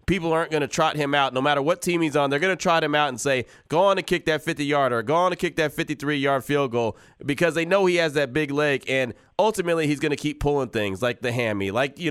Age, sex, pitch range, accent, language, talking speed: 20-39, male, 130-160 Hz, American, English, 285 wpm